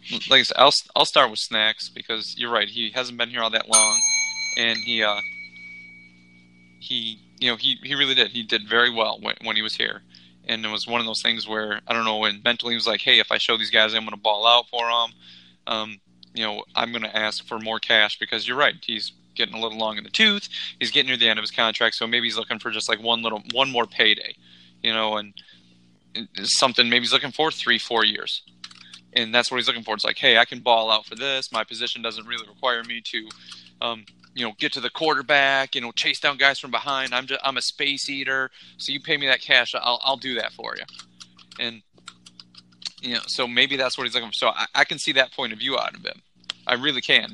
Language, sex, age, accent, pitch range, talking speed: English, male, 20-39, American, 110-125 Hz, 250 wpm